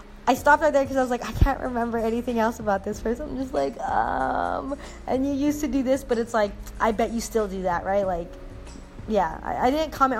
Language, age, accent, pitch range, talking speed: English, 20-39, American, 185-235 Hz, 245 wpm